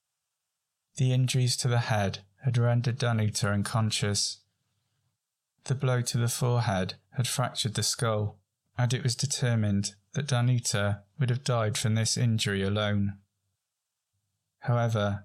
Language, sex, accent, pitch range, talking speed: English, male, British, 105-125 Hz, 125 wpm